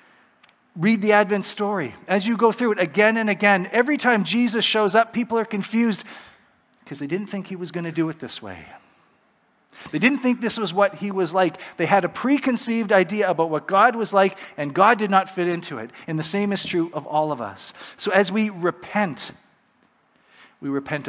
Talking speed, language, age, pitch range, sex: 210 wpm, English, 40-59, 125-195 Hz, male